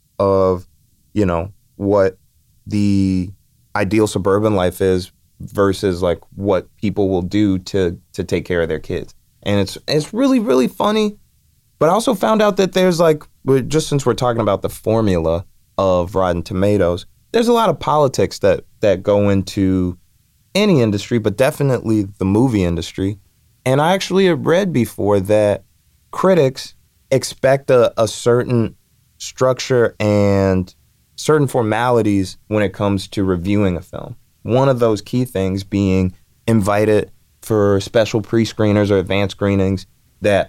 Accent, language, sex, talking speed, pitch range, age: American, English, male, 150 wpm, 95-115 Hz, 30-49